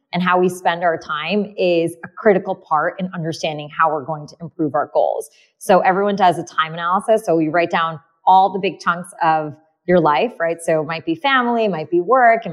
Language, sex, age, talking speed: English, female, 20-39, 225 wpm